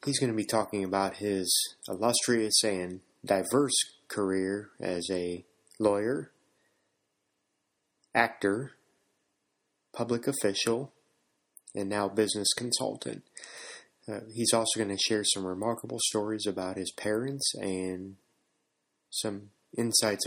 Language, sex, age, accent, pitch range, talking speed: English, male, 30-49, American, 110-145 Hz, 105 wpm